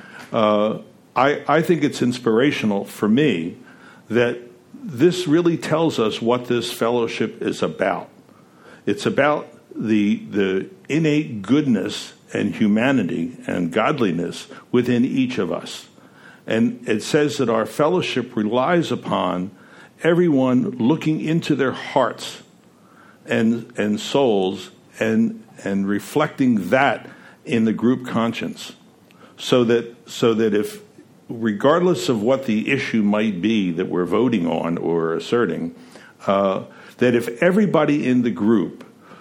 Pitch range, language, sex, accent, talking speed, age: 105-150 Hz, English, male, American, 125 wpm, 60-79